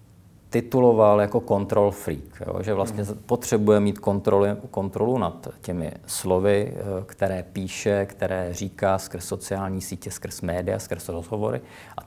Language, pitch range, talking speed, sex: Czech, 95-110 Hz, 130 wpm, male